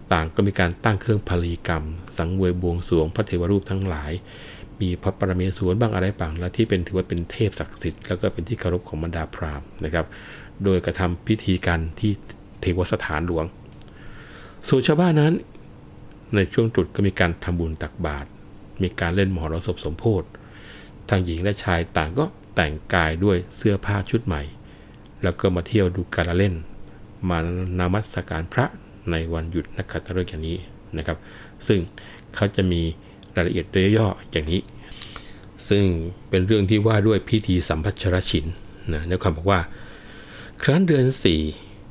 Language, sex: Thai, male